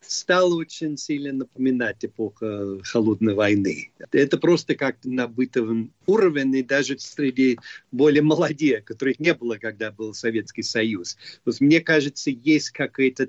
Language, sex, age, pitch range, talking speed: Russian, male, 40-59, 120-155 Hz, 135 wpm